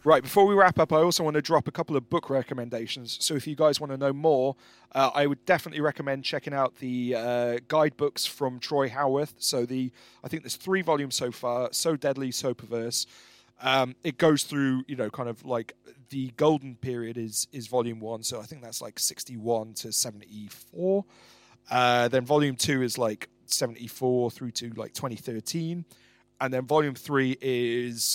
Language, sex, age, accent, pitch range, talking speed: English, male, 30-49, British, 120-145 Hz, 190 wpm